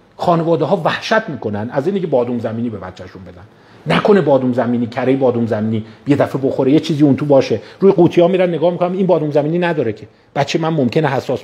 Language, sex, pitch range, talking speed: Persian, male, 125-195 Hz, 210 wpm